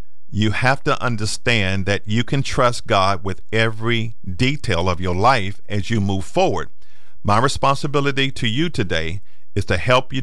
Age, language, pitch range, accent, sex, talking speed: 50-69, English, 95-130 Hz, American, male, 165 wpm